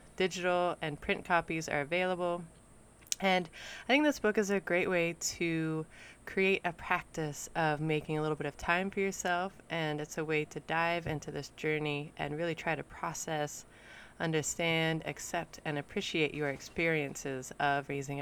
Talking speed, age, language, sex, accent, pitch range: 165 wpm, 20-39, English, female, American, 150-180 Hz